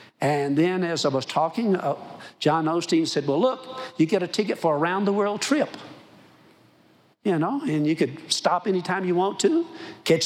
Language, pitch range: English, 145-180 Hz